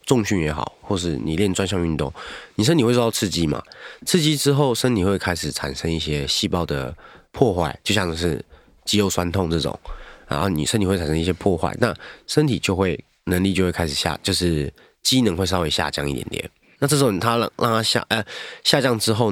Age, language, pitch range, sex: 30-49, Chinese, 80-110 Hz, male